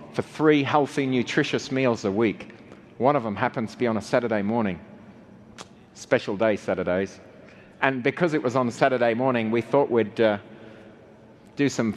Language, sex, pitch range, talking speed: English, male, 110-140 Hz, 165 wpm